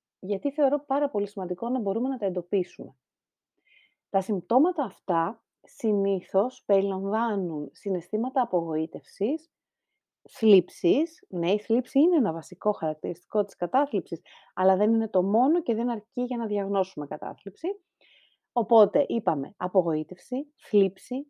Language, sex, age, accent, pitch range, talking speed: Greek, female, 30-49, native, 185-260 Hz, 120 wpm